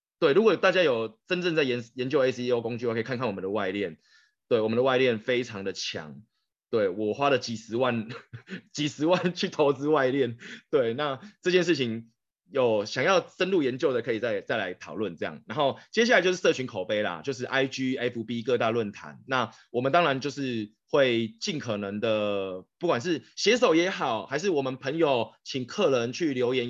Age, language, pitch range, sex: 20-39, Chinese, 115-165 Hz, male